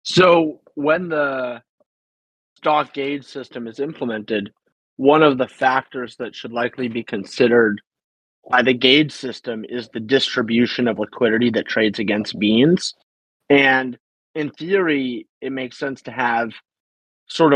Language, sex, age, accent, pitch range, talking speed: English, male, 30-49, American, 120-145 Hz, 135 wpm